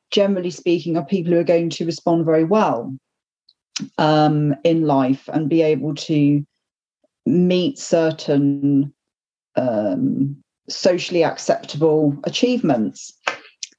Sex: female